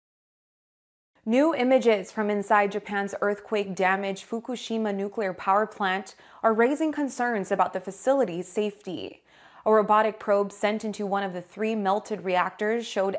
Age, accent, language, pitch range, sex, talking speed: 20-39, American, English, 190-220 Hz, female, 130 wpm